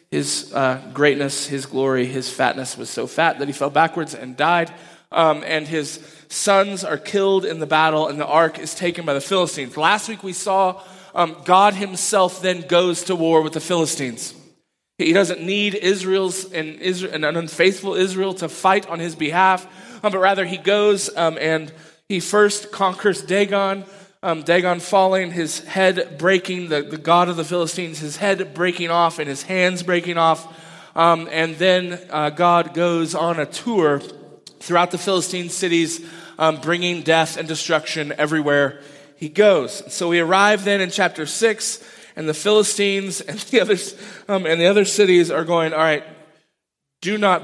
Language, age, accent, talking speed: English, 20-39, American, 175 wpm